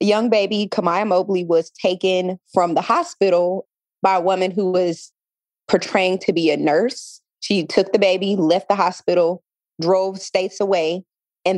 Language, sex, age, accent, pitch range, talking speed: English, female, 20-39, American, 170-205 Hz, 160 wpm